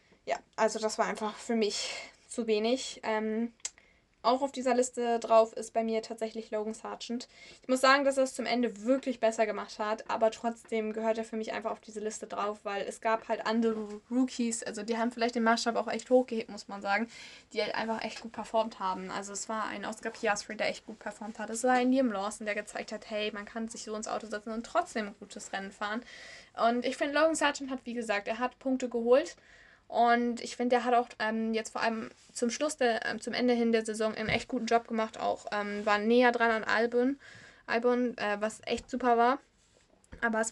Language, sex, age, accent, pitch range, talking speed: German, female, 10-29, German, 215-240 Hz, 225 wpm